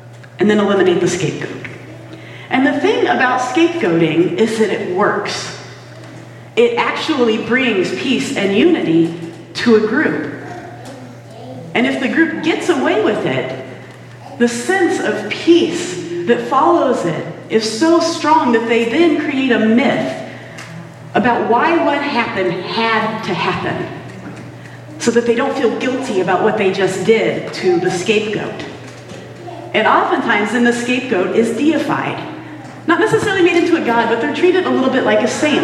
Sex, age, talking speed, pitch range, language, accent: female, 40-59, 150 wpm, 180-270 Hz, English, American